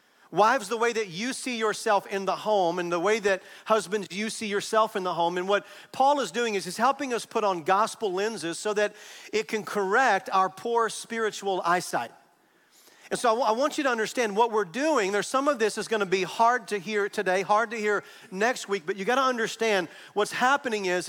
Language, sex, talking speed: English, male, 220 wpm